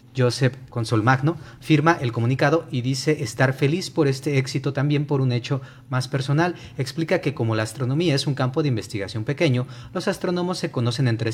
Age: 30-49